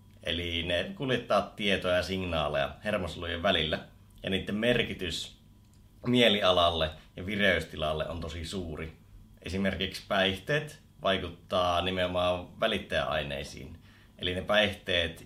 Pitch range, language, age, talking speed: 90-110 Hz, Finnish, 30-49, 100 wpm